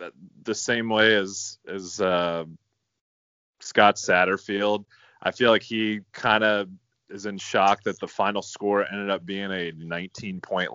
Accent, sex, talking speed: American, male, 150 wpm